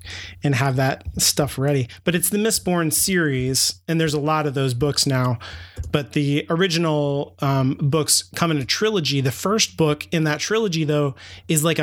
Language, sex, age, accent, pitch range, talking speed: English, male, 30-49, American, 130-155 Hz, 185 wpm